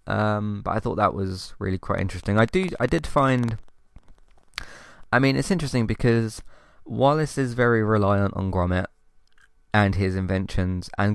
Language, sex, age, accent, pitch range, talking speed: English, male, 20-39, British, 95-110 Hz, 155 wpm